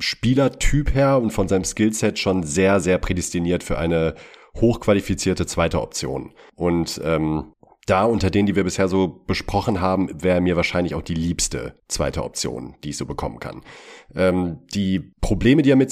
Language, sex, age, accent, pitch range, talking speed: German, male, 40-59, German, 90-105 Hz, 170 wpm